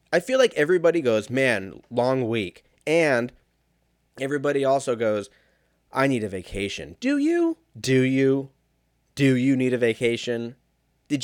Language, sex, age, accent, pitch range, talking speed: English, male, 30-49, American, 110-140 Hz, 140 wpm